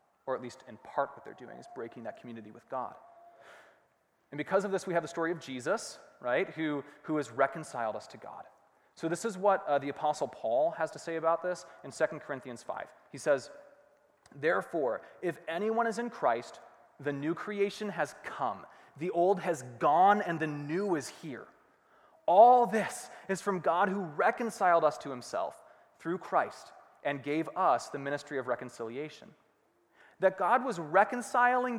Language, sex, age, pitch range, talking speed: English, male, 30-49, 135-200 Hz, 175 wpm